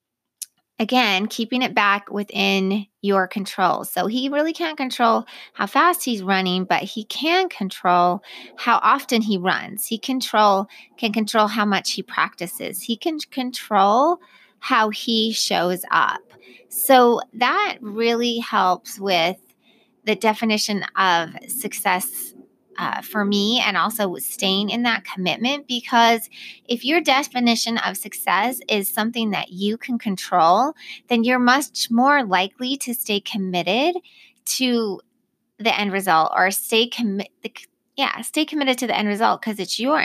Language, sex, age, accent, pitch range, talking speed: English, female, 30-49, American, 200-250 Hz, 140 wpm